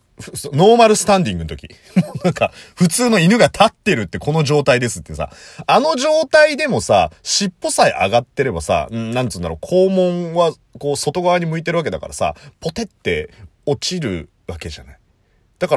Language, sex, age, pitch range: Japanese, male, 30-49, 135-205 Hz